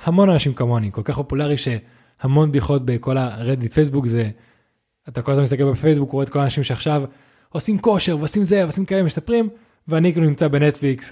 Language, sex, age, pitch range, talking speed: Hebrew, male, 20-39, 125-155 Hz, 180 wpm